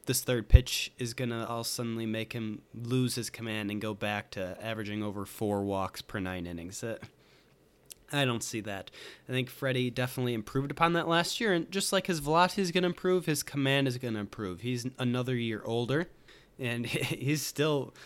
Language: English